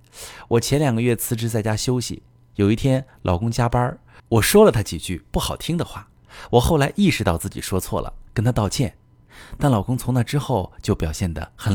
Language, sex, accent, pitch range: Chinese, male, native, 95-135 Hz